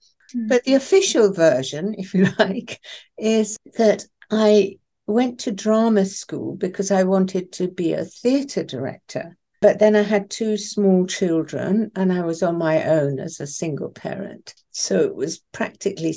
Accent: British